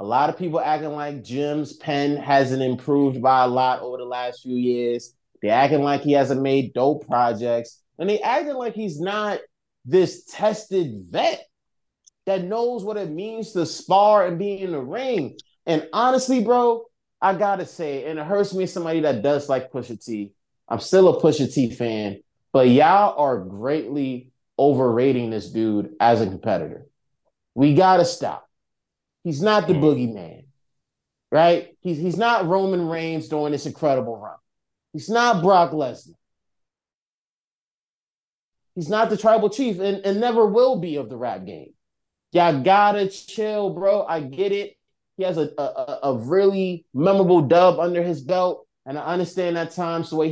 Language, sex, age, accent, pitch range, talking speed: English, male, 20-39, American, 135-195 Hz, 170 wpm